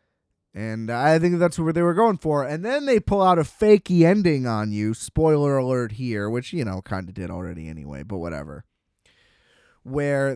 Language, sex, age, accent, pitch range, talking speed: English, male, 20-39, American, 110-155 Hz, 190 wpm